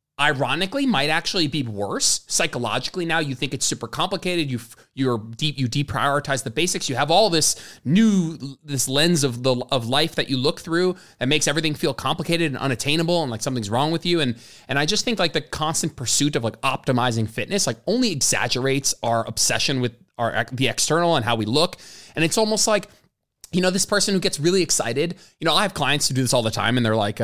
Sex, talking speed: male, 220 wpm